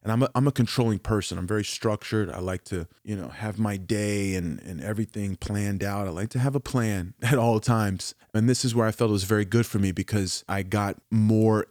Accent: American